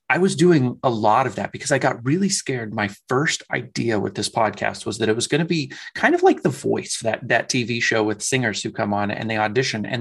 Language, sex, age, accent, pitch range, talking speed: English, male, 30-49, American, 105-120 Hz, 260 wpm